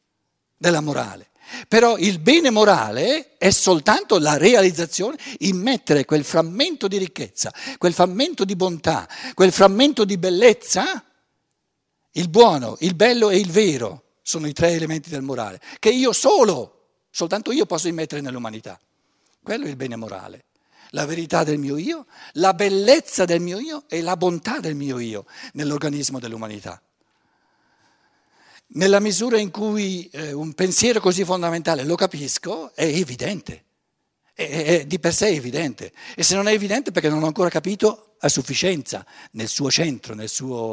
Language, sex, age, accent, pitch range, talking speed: Italian, male, 60-79, native, 150-200 Hz, 150 wpm